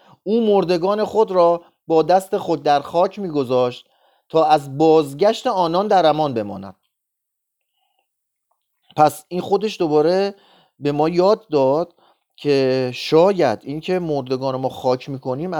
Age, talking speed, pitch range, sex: 30-49, 125 wpm, 145-205 Hz, male